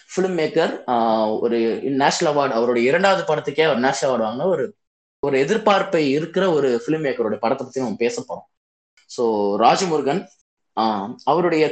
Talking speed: 135 wpm